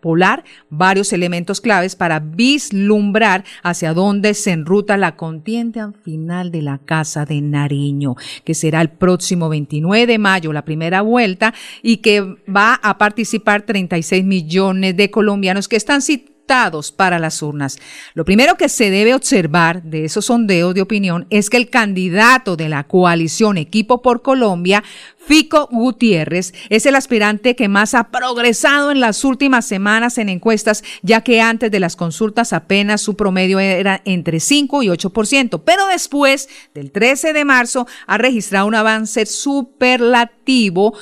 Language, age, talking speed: Spanish, 50-69, 150 wpm